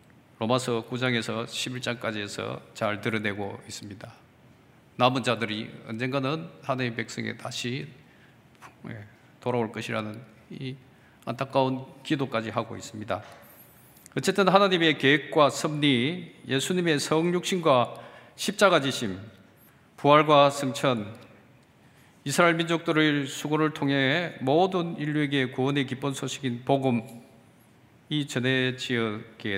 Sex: male